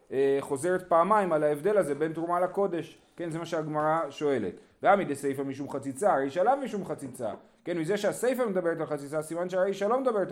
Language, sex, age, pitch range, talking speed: Hebrew, male, 30-49, 130-180 Hz, 180 wpm